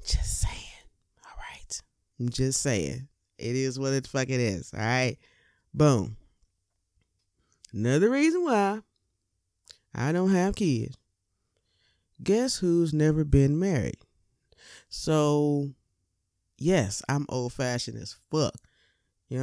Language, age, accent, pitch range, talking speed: English, 20-39, American, 120-165 Hz, 115 wpm